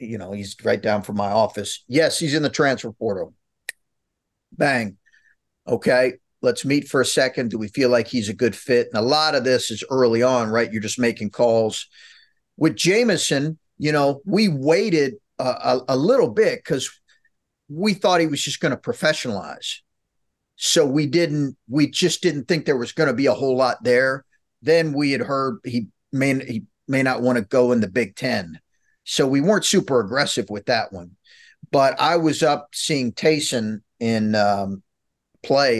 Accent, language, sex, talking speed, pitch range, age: American, English, male, 185 wpm, 100-145 Hz, 40-59